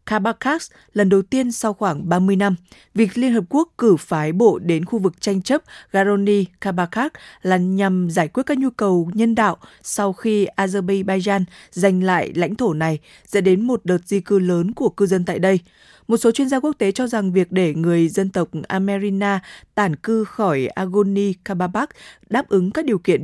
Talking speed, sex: 190 wpm, female